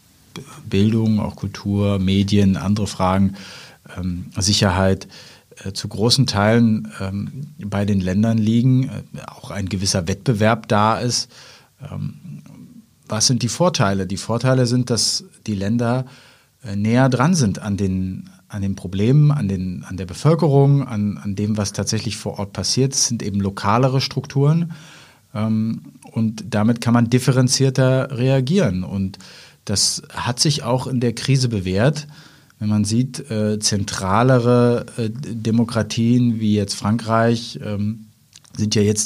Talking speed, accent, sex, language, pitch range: 135 wpm, German, male, German, 105-130 Hz